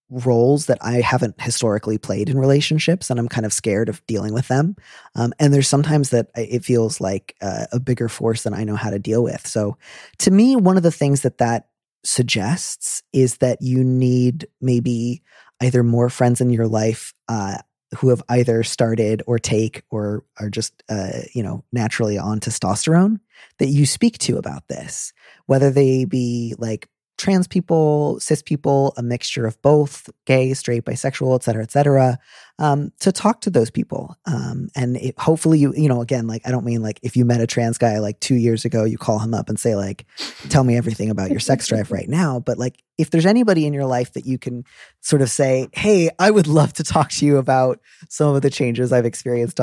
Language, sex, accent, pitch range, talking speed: English, male, American, 115-140 Hz, 210 wpm